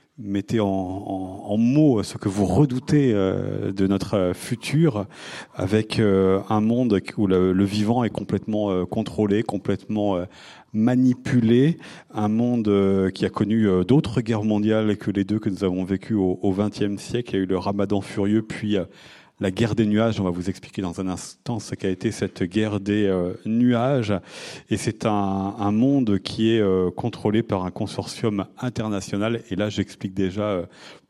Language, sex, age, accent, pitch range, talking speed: French, male, 40-59, French, 95-115 Hz, 180 wpm